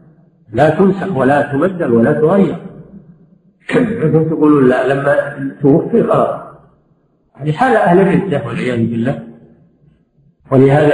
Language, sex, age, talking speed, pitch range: Arabic, male, 50-69, 110 wpm, 145-195 Hz